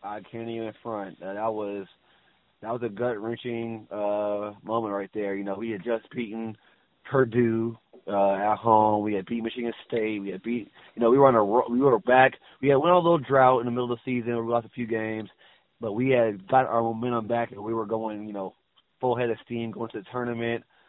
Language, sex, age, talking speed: English, male, 20-39, 235 wpm